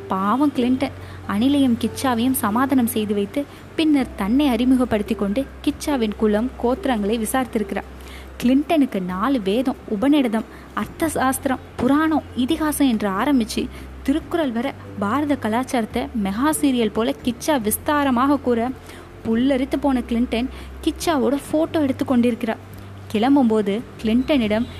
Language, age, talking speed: Tamil, 20-39, 105 wpm